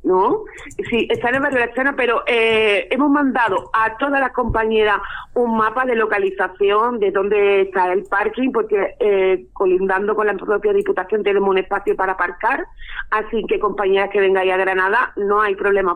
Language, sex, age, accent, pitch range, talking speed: Spanish, female, 40-59, Spanish, 195-270 Hz, 175 wpm